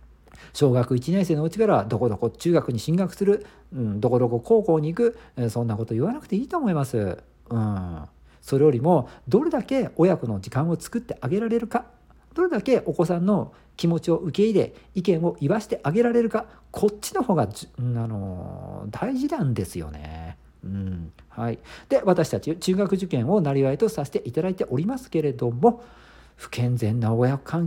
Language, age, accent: Japanese, 50-69, native